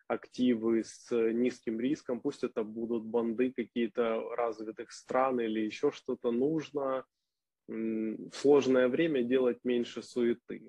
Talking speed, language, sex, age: 120 wpm, Ukrainian, male, 20-39